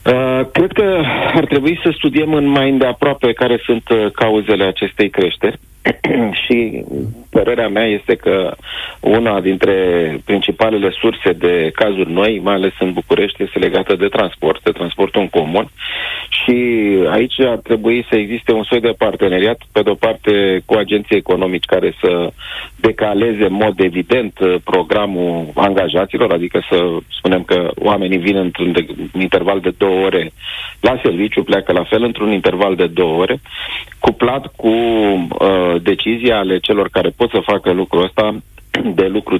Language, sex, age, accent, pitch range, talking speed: Romanian, male, 40-59, native, 95-120 Hz, 145 wpm